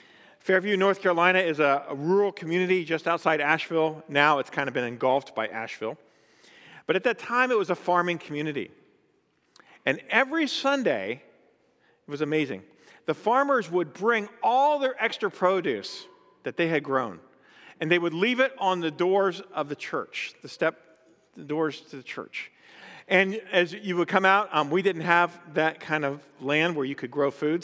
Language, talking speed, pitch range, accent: English, 180 wpm, 155-230 Hz, American